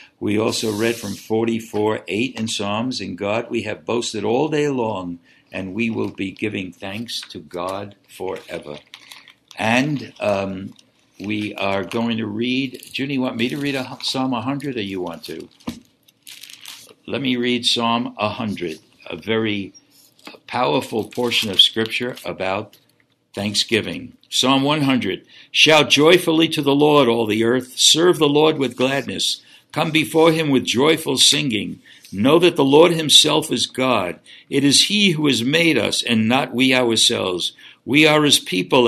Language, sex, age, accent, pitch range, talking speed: English, male, 60-79, American, 110-145 Hz, 155 wpm